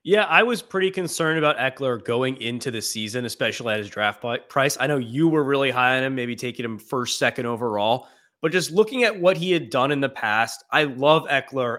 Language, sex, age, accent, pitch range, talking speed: English, male, 20-39, American, 120-145 Hz, 225 wpm